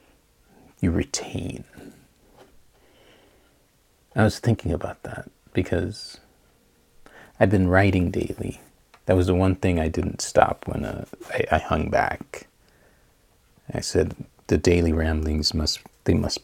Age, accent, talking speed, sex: 40-59, American, 125 wpm, male